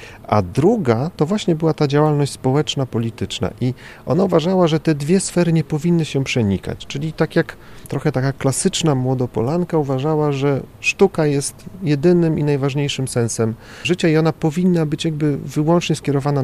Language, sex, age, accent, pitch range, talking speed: Polish, male, 40-59, native, 110-150 Hz, 155 wpm